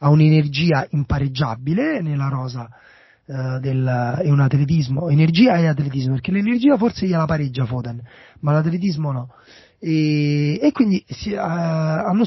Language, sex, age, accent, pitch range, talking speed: Italian, male, 30-49, native, 140-180 Hz, 130 wpm